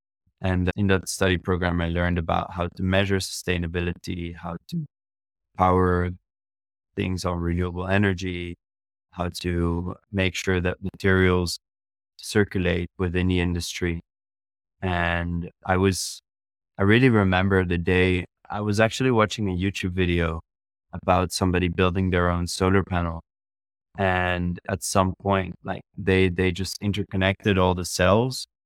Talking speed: 130 wpm